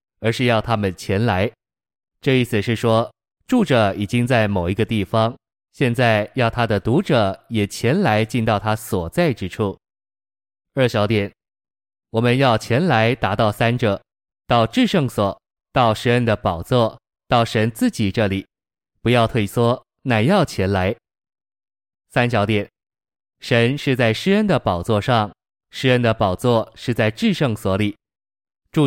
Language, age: Chinese, 20-39